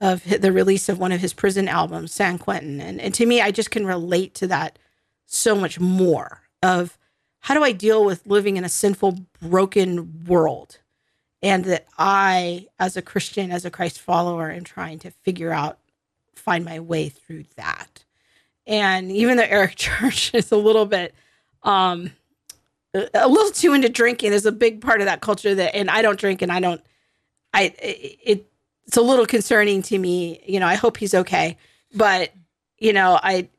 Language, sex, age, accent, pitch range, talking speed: English, female, 40-59, American, 185-225 Hz, 190 wpm